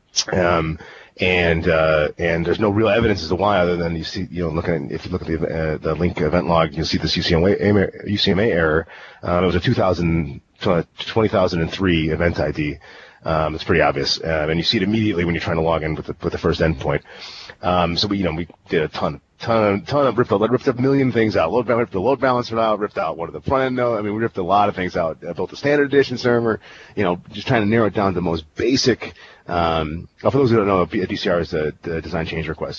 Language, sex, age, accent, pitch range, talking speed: English, male, 30-49, American, 80-105 Hz, 250 wpm